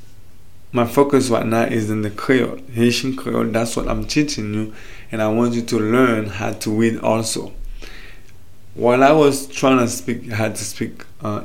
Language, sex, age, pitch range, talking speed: English, male, 20-39, 105-130 Hz, 185 wpm